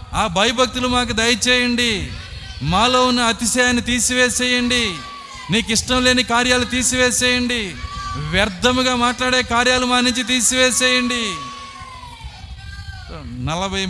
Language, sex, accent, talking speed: Telugu, male, native, 85 wpm